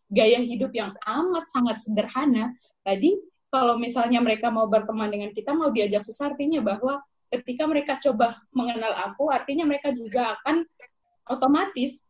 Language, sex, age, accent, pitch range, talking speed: Indonesian, female, 20-39, native, 215-270 Hz, 140 wpm